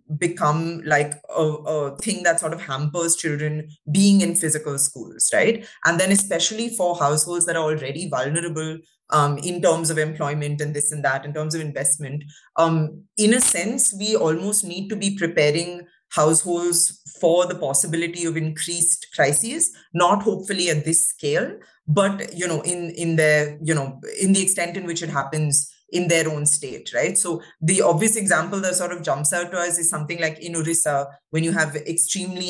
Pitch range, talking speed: 155-180 Hz, 185 wpm